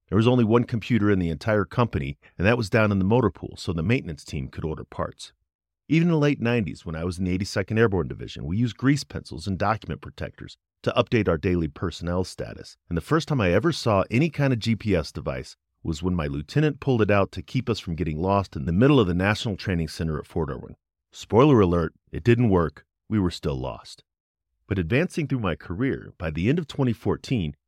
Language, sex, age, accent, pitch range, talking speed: English, male, 40-59, American, 85-125 Hz, 230 wpm